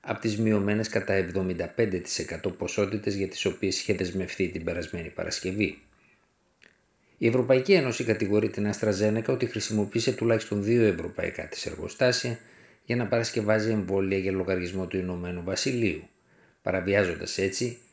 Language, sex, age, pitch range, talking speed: Greek, male, 50-69, 95-110 Hz, 125 wpm